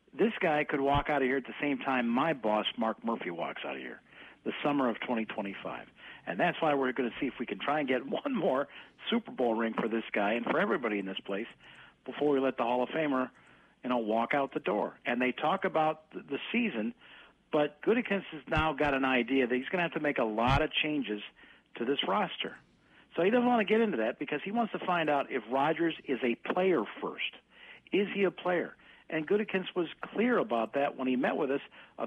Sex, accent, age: male, American, 50-69